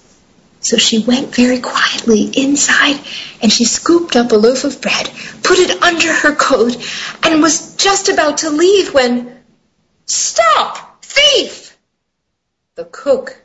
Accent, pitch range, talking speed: American, 205-295 Hz, 135 wpm